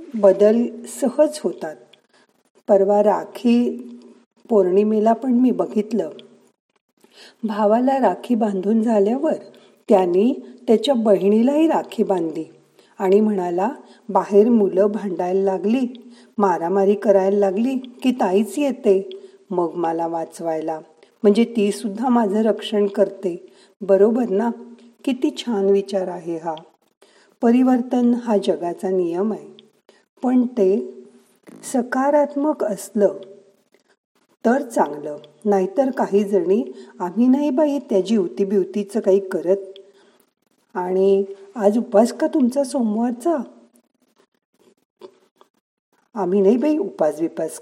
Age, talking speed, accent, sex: 50-69, 100 wpm, native, female